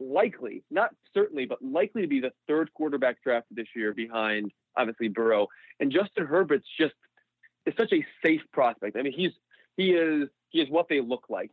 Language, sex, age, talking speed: English, male, 30-49, 185 wpm